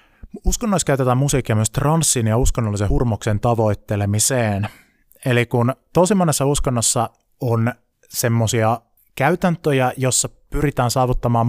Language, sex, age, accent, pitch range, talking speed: Finnish, male, 20-39, native, 110-135 Hz, 105 wpm